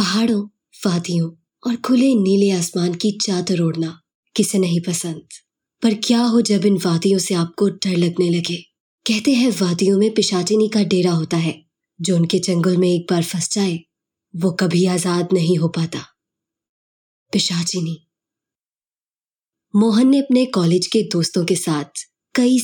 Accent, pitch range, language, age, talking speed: native, 175-215 Hz, Hindi, 20-39, 150 wpm